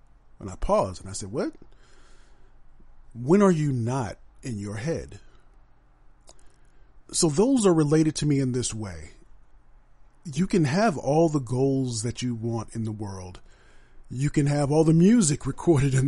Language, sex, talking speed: English, male, 160 wpm